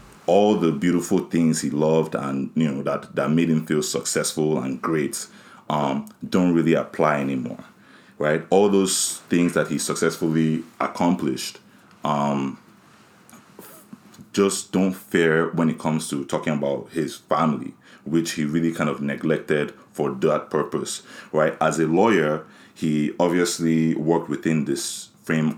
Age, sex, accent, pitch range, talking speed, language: 30-49, male, Nigerian, 75-85 Hz, 145 wpm, English